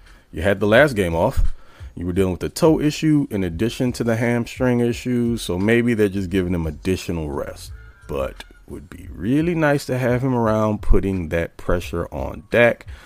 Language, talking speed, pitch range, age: English, 195 wpm, 85-120 Hz, 30-49